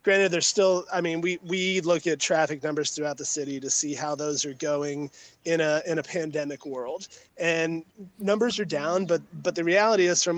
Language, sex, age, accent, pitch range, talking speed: English, male, 30-49, American, 150-175 Hz, 200 wpm